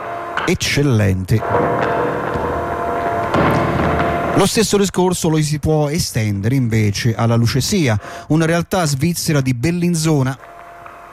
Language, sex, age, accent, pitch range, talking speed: Italian, male, 30-49, native, 110-150 Hz, 85 wpm